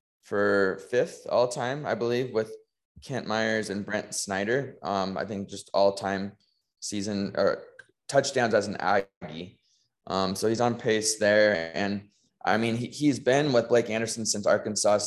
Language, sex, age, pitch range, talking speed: English, male, 20-39, 100-120 Hz, 165 wpm